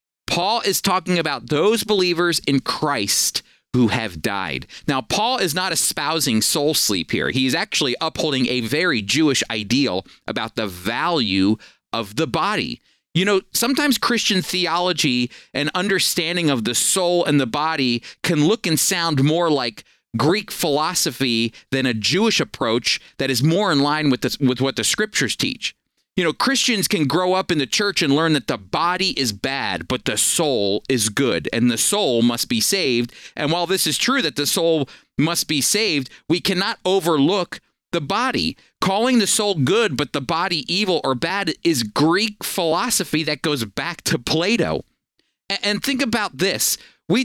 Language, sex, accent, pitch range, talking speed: English, male, American, 135-190 Hz, 170 wpm